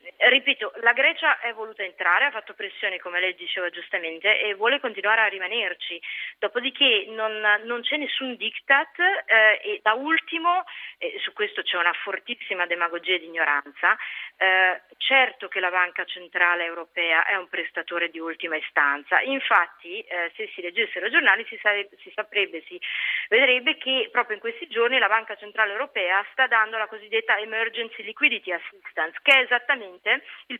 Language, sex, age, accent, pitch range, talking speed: Italian, female, 30-49, native, 180-250 Hz, 160 wpm